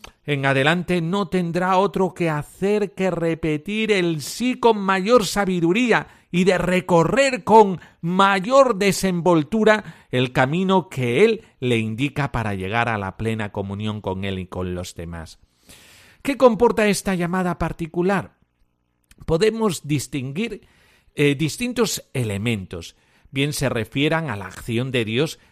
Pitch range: 115-190 Hz